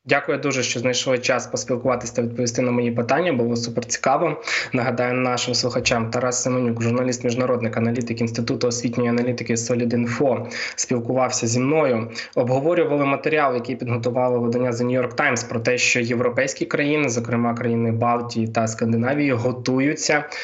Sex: male